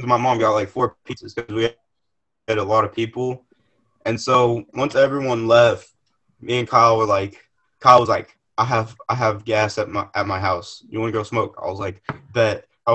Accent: American